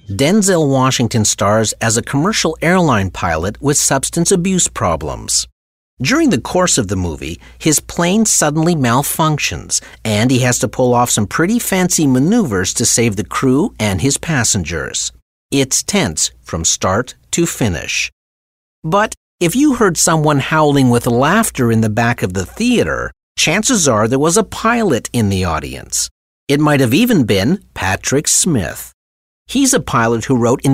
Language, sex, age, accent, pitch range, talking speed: English, male, 50-69, American, 105-155 Hz, 160 wpm